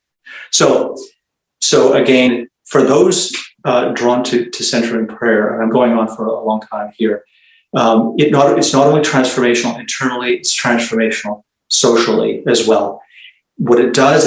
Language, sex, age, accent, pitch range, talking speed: English, male, 40-59, American, 110-130 Hz, 145 wpm